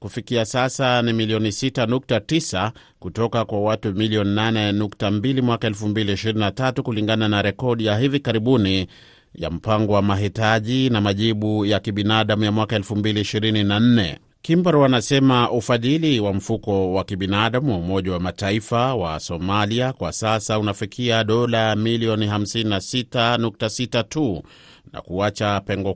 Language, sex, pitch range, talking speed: Swahili, male, 100-120 Hz, 120 wpm